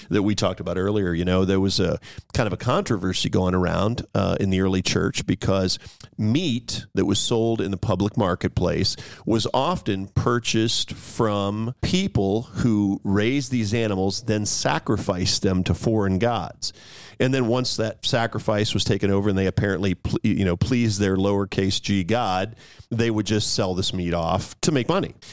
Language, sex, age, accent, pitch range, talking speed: English, male, 40-59, American, 100-120 Hz, 175 wpm